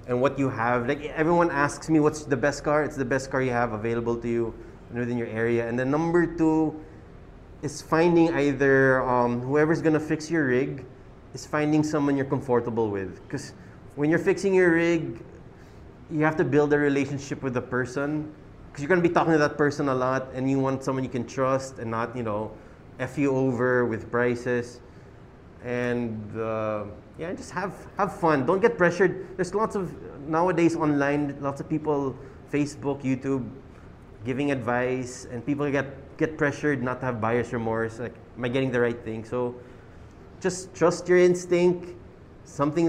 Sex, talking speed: male, 180 wpm